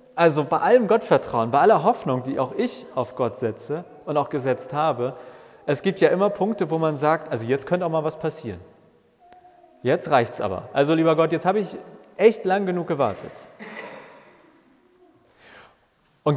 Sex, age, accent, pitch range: male, 30-49, German, 130-185 Hz